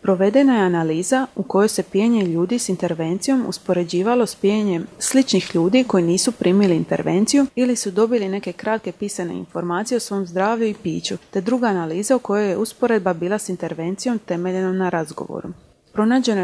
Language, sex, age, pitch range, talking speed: Croatian, female, 30-49, 180-225 Hz, 165 wpm